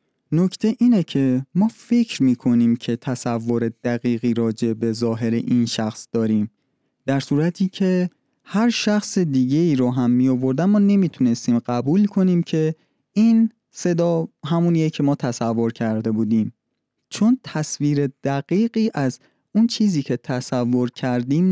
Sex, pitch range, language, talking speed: male, 120-180 Hz, Persian, 130 wpm